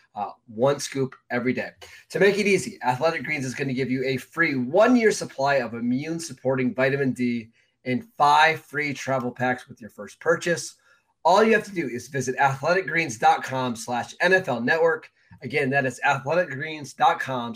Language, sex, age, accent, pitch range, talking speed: English, male, 20-39, American, 125-155 Hz, 165 wpm